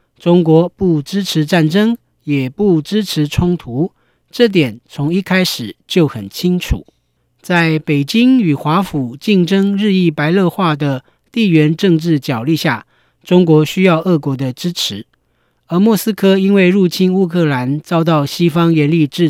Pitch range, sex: 145-190 Hz, male